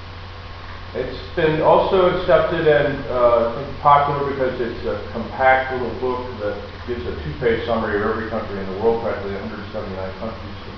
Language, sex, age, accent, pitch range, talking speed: Italian, male, 40-59, American, 95-120 Hz, 155 wpm